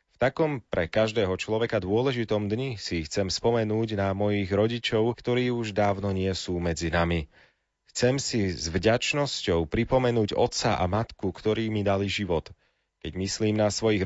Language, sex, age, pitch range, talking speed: Slovak, male, 30-49, 95-120 Hz, 155 wpm